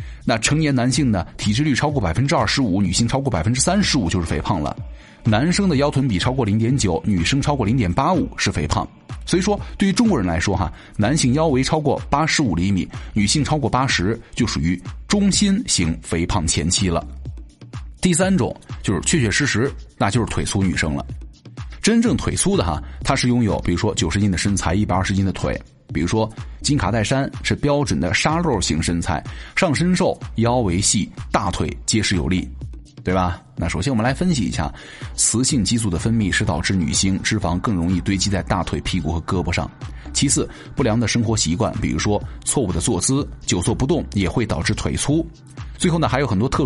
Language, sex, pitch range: Chinese, male, 95-140 Hz